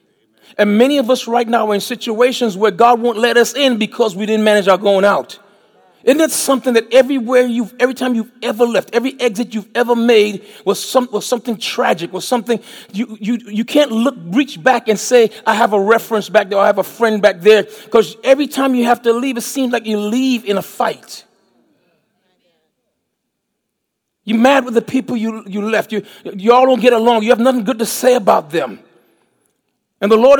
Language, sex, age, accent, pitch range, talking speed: English, male, 40-59, American, 215-255 Hz, 210 wpm